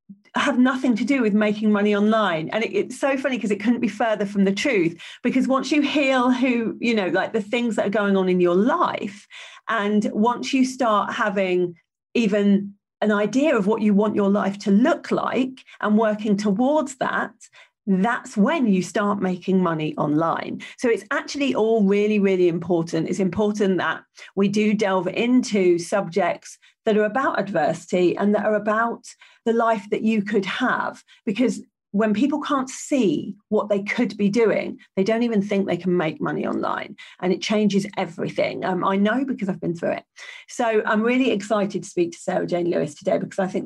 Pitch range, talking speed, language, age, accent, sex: 195-240 Hz, 190 wpm, English, 40-59, British, female